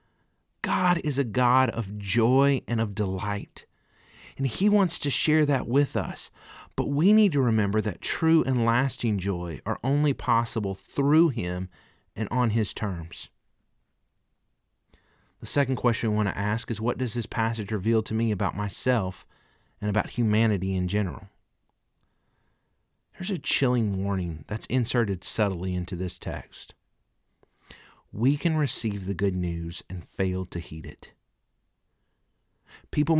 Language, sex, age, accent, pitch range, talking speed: English, male, 30-49, American, 95-125 Hz, 145 wpm